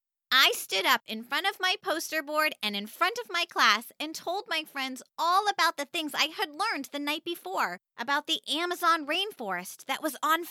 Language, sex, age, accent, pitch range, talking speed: English, female, 20-39, American, 275-370 Hz, 205 wpm